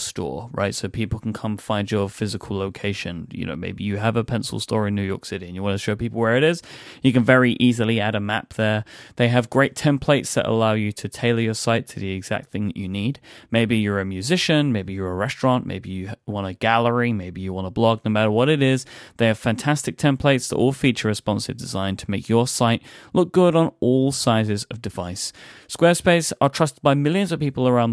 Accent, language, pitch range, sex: British, English, 105-130 Hz, male